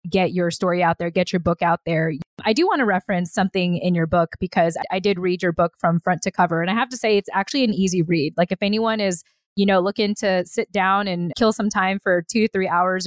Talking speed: 265 wpm